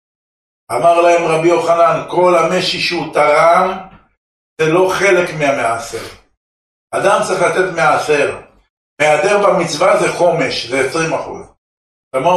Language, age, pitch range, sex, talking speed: Hebrew, 60-79, 150-190 Hz, male, 115 wpm